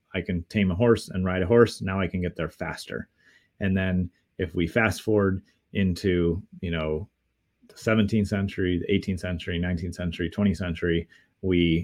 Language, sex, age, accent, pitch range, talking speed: English, male, 30-49, American, 90-105 Hz, 175 wpm